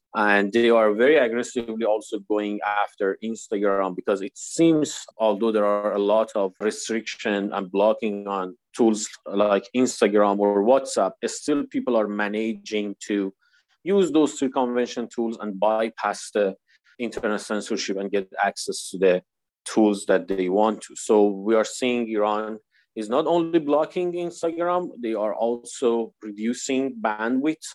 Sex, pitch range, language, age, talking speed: male, 105-125 Hz, English, 30-49, 145 wpm